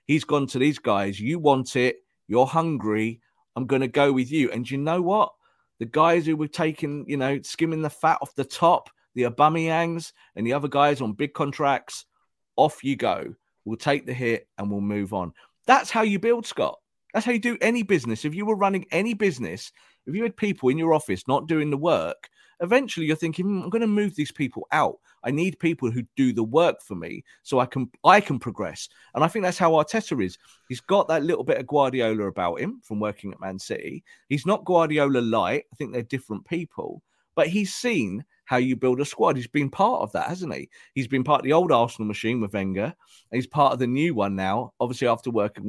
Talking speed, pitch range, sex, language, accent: 225 wpm, 125-165 Hz, male, English, British